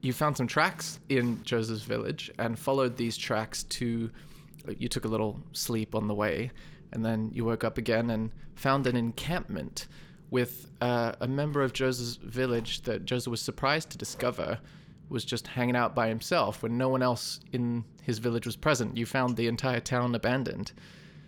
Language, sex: English, male